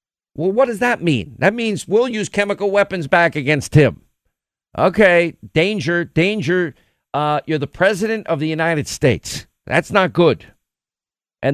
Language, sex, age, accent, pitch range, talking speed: English, male, 50-69, American, 145-195 Hz, 150 wpm